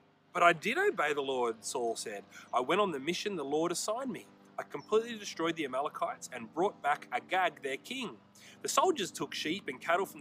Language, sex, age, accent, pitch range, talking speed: English, male, 30-49, Australian, 155-225 Hz, 205 wpm